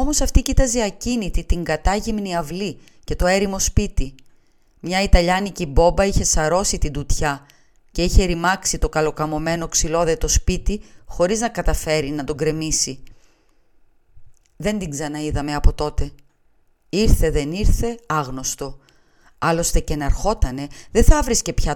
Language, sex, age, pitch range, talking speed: Greek, female, 30-49, 145-185 Hz, 135 wpm